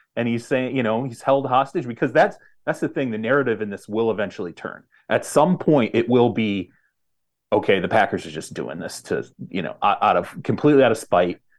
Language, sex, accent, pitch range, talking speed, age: English, male, American, 110-160 Hz, 215 wpm, 30-49